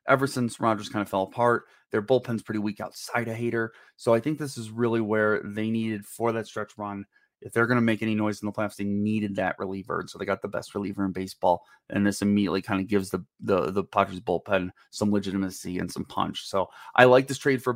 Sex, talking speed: male, 240 wpm